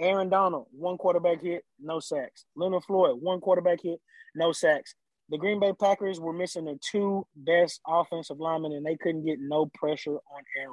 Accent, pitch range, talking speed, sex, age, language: American, 155-200 Hz, 185 wpm, male, 20-39, English